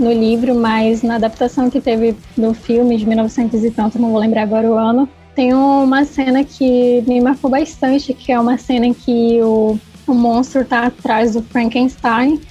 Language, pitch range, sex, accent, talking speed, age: Portuguese, 245-280 Hz, female, Brazilian, 185 wpm, 10-29